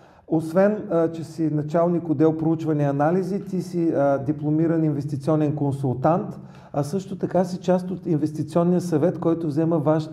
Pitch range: 150-175 Hz